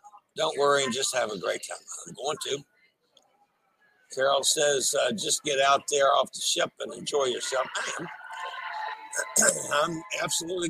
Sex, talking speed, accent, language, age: male, 150 wpm, American, English, 60-79